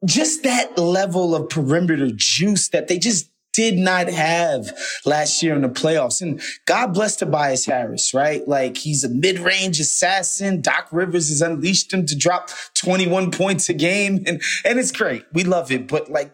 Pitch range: 150-185 Hz